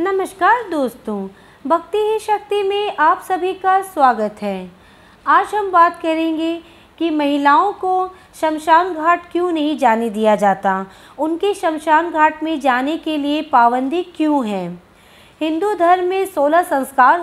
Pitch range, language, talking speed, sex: 270-345 Hz, Hindi, 140 wpm, female